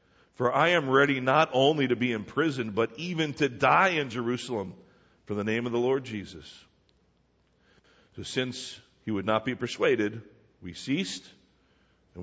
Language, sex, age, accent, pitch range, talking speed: English, male, 50-69, American, 110-145 Hz, 155 wpm